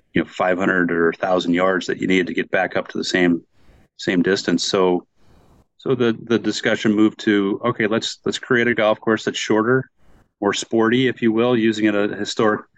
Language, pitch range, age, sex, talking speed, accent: English, 100-115 Hz, 30-49, male, 195 wpm, American